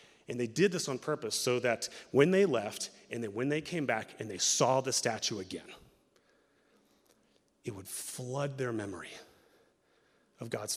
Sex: male